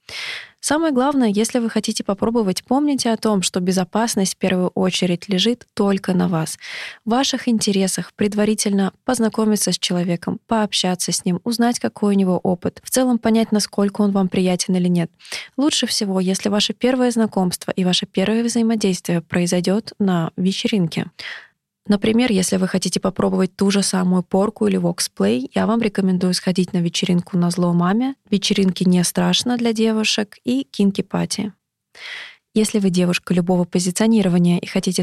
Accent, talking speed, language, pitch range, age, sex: native, 155 wpm, Russian, 185-220 Hz, 20-39, female